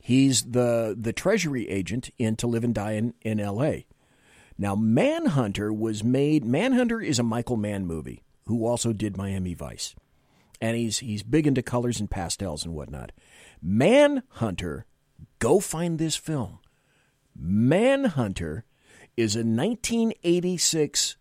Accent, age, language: American, 40-59, English